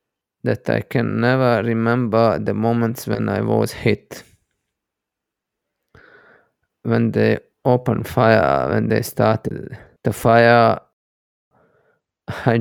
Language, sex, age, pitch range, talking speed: English, male, 20-39, 110-120 Hz, 100 wpm